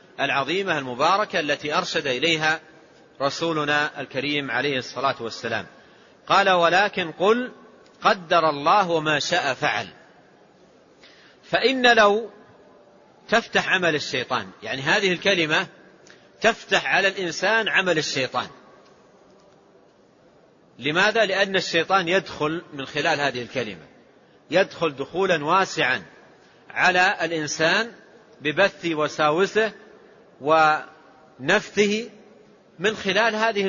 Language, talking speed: Arabic, 90 wpm